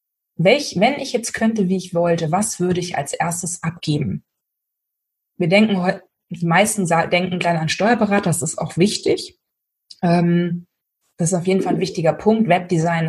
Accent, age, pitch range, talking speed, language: German, 20-39, 170-190 Hz, 155 wpm, German